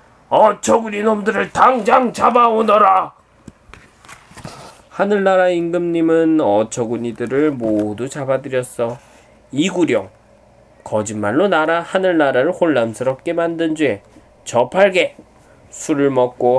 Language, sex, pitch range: Korean, male, 120-185 Hz